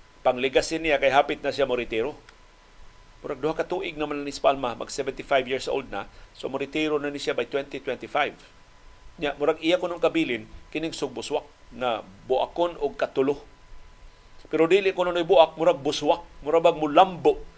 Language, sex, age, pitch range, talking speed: Filipino, male, 40-59, 135-170 Hz, 145 wpm